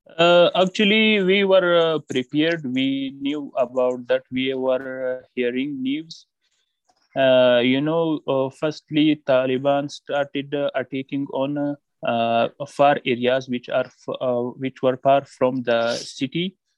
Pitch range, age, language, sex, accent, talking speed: 125-150 Hz, 30-49, Hindi, male, native, 140 wpm